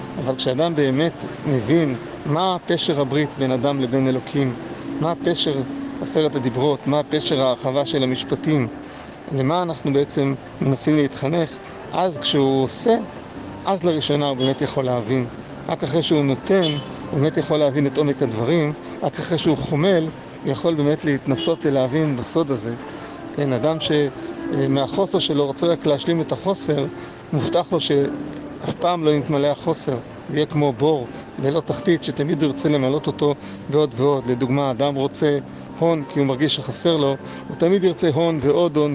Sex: male